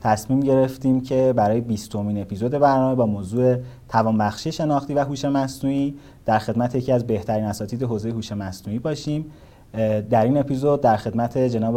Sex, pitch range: male, 110-130 Hz